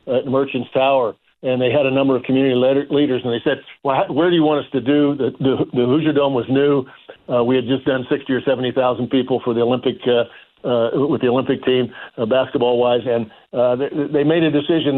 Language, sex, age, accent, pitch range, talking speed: English, male, 50-69, American, 125-145 Hz, 230 wpm